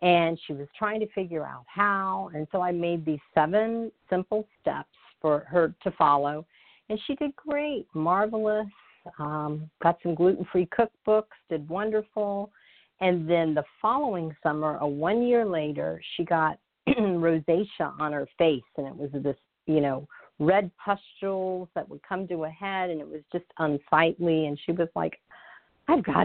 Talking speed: 165 wpm